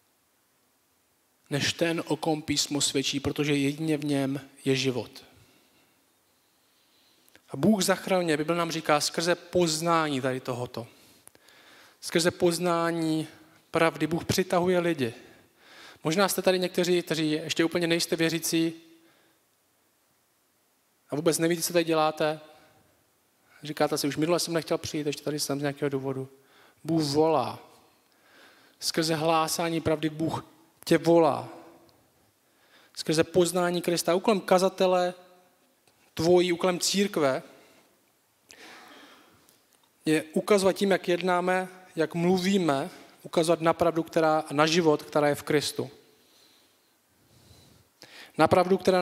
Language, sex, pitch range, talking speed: Czech, male, 145-175 Hz, 110 wpm